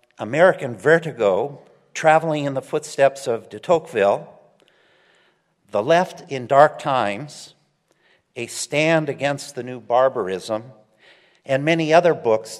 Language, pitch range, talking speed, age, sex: English, 125-160 Hz, 115 wpm, 50-69, male